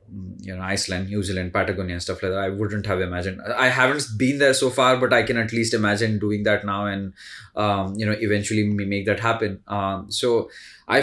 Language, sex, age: English, male, 20-39